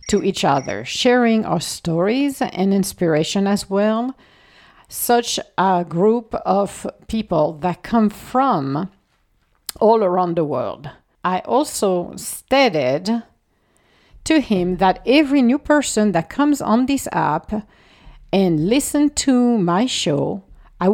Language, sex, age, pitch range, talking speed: English, female, 50-69, 180-255 Hz, 120 wpm